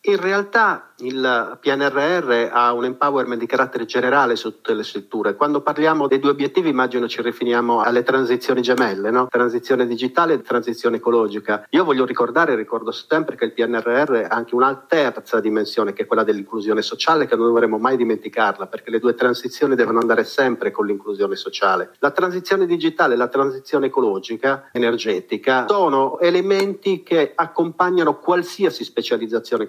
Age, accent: 40-59, native